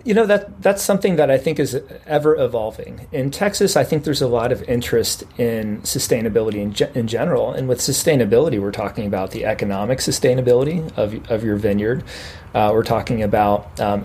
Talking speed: 185 wpm